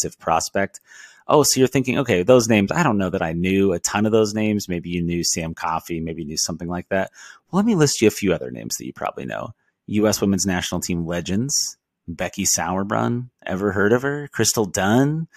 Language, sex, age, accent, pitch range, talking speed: English, male, 30-49, American, 90-125 Hz, 220 wpm